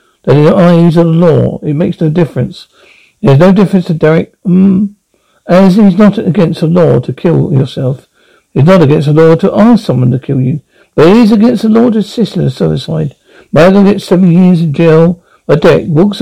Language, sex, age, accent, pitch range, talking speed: English, male, 60-79, British, 150-205 Hz, 205 wpm